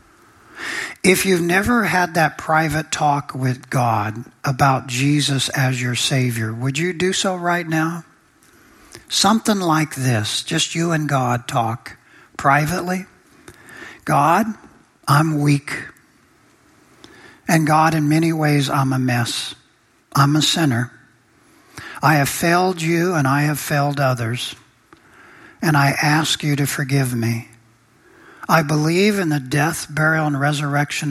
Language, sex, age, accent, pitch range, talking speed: English, male, 60-79, American, 130-160 Hz, 130 wpm